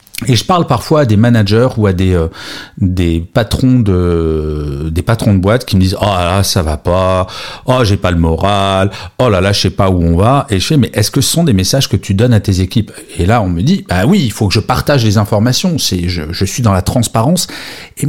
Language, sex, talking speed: French, male, 260 wpm